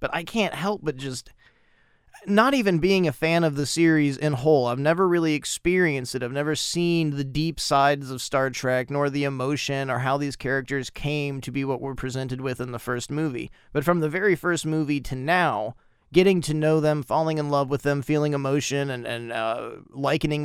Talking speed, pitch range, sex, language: 210 wpm, 130-170 Hz, male, English